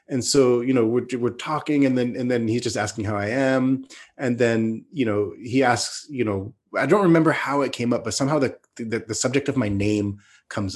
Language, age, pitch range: English, 30-49, 110-140 Hz